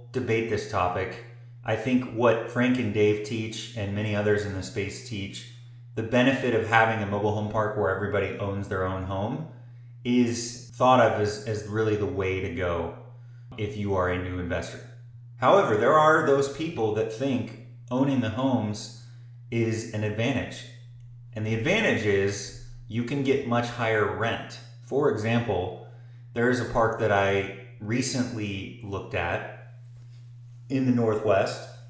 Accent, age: American, 30-49